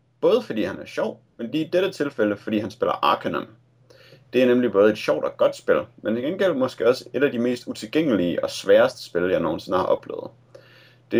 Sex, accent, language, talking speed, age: male, native, Danish, 220 wpm, 30-49